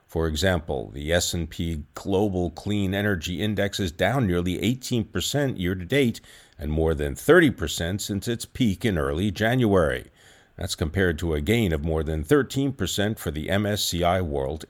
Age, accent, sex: 50-69, American, male